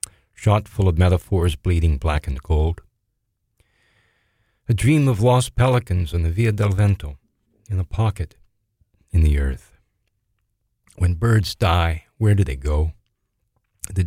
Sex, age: male, 40-59